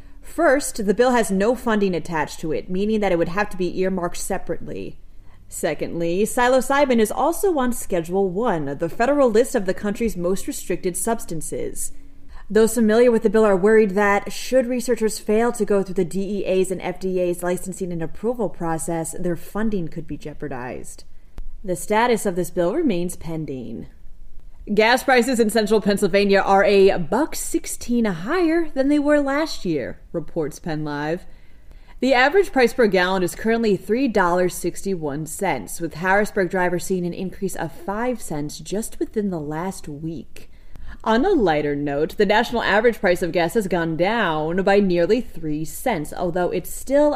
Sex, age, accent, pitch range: female, 30-49, American, 165-225 Hz